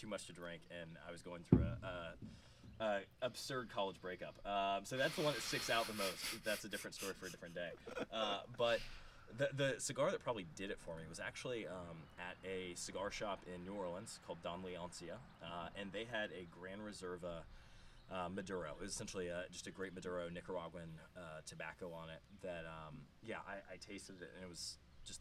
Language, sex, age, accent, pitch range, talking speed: English, male, 20-39, American, 85-100 Hz, 210 wpm